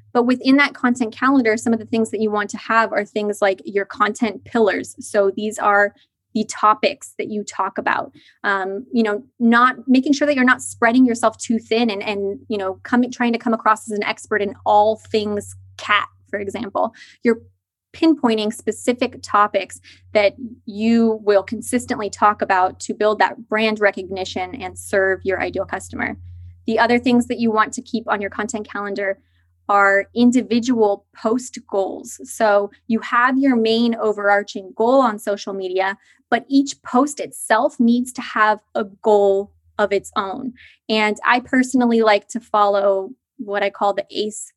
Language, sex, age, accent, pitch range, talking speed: English, female, 20-39, American, 200-240 Hz, 175 wpm